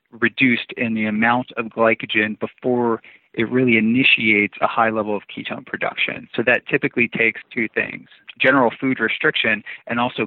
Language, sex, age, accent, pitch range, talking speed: English, male, 40-59, American, 110-130 Hz, 160 wpm